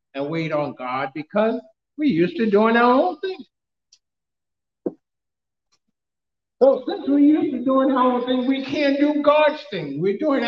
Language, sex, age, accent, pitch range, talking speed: English, male, 50-69, American, 210-290 Hz, 165 wpm